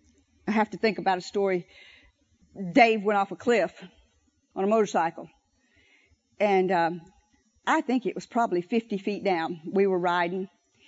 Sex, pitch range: female, 190-235 Hz